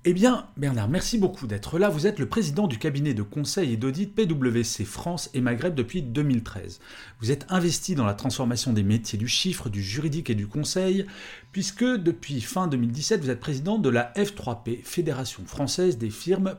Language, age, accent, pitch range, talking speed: French, 40-59, French, 110-175 Hz, 190 wpm